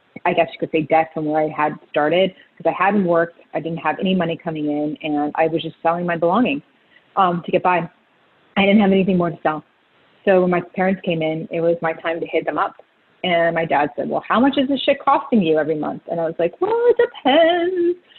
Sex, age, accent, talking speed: female, 30-49, American, 245 wpm